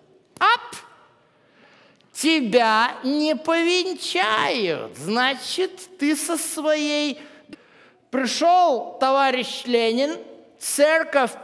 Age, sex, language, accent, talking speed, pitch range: 50-69, male, Russian, native, 65 wpm, 255-330 Hz